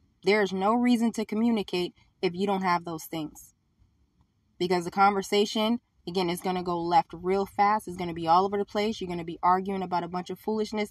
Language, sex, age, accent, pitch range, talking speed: English, female, 20-39, American, 180-205 Hz, 225 wpm